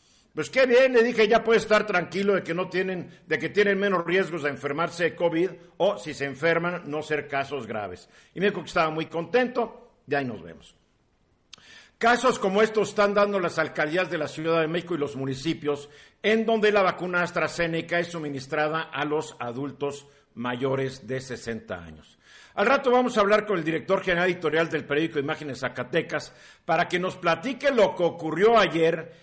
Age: 50-69